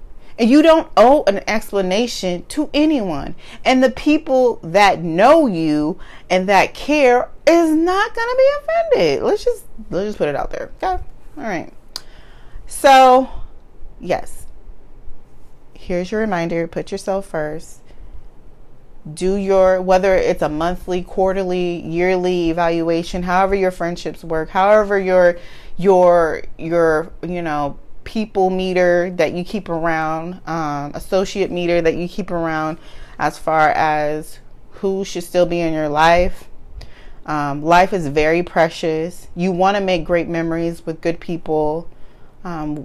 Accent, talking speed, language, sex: American, 135 wpm, English, female